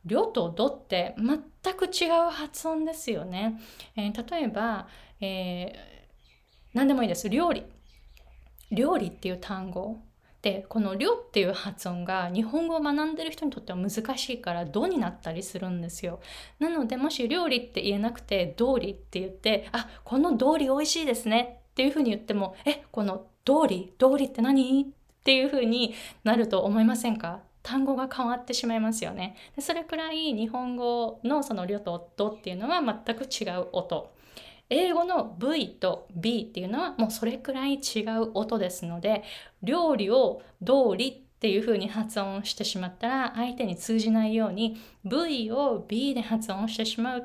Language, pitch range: Japanese, 195-265 Hz